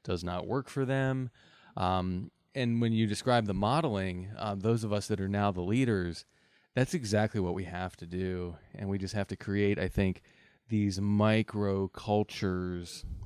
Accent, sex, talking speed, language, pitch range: American, male, 175 wpm, English, 100-125 Hz